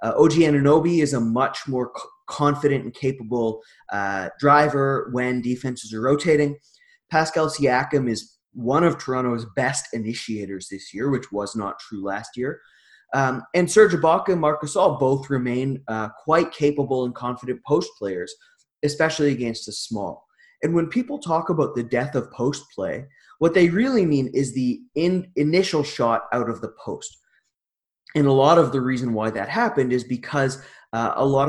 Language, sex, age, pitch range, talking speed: English, male, 20-39, 125-160 Hz, 170 wpm